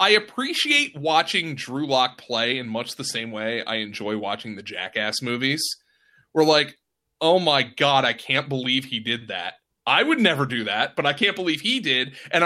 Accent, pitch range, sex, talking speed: American, 140-210 Hz, male, 195 wpm